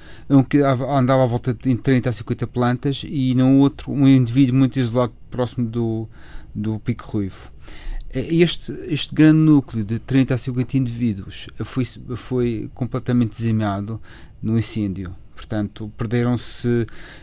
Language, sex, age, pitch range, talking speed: Portuguese, male, 30-49, 110-130 Hz, 135 wpm